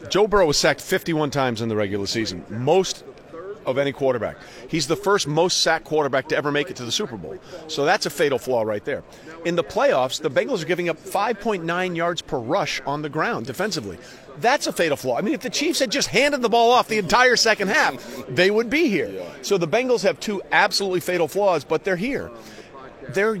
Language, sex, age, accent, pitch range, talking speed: English, male, 40-59, American, 155-195 Hz, 220 wpm